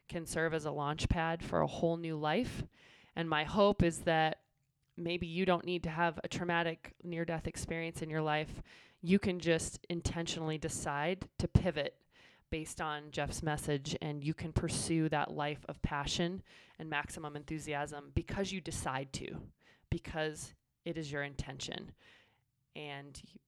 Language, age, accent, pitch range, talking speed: English, 20-39, American, 145-175 Hz, 155 wpm